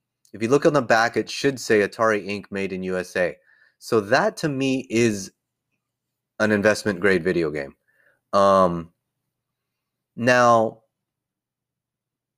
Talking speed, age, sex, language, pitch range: 125 wpm, 30-49, male, English, 95-125 Hz